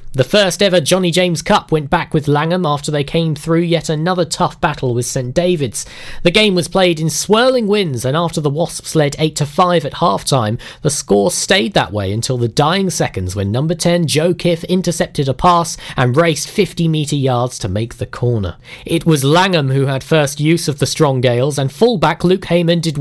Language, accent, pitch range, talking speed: English, British, 135-175 Hz, 205 wpm